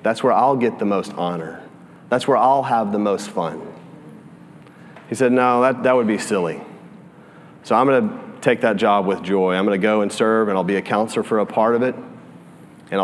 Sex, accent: male, American